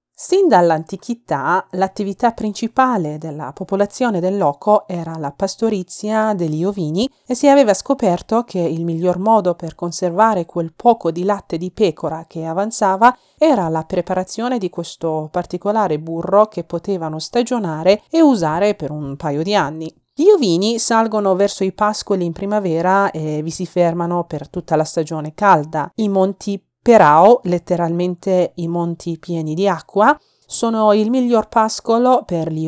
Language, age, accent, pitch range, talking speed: Italian, 30-49, native, 165-210 Hz, 145 wpm